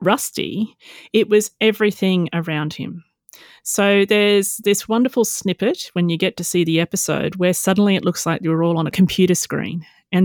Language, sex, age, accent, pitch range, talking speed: English, female, 30-49, Australian, 170-230 Hz, 175 wpm